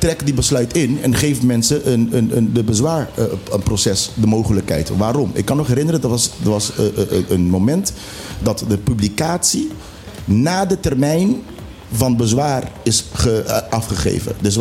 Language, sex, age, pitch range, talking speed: Dutch, male, 50-69, 110-145 Hz, 175 wpm